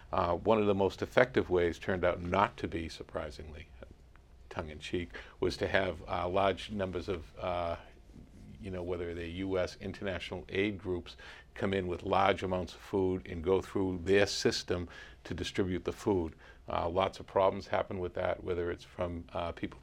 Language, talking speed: English, 180 wpm